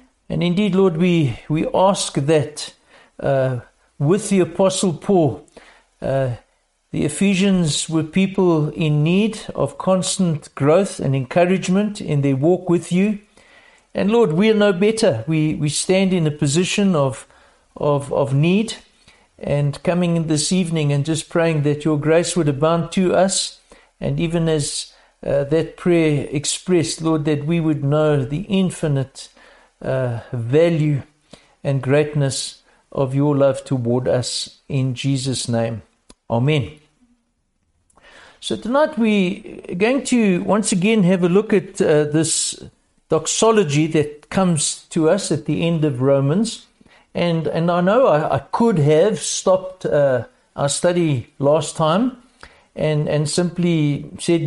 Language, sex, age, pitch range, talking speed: English, male, 60-79, 150-190 Hz, 140 wpm